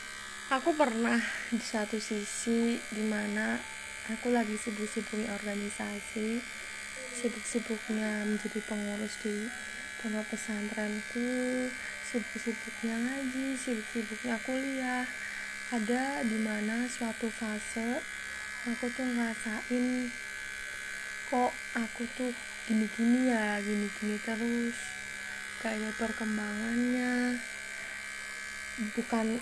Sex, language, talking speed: female, Malay, 80 wpm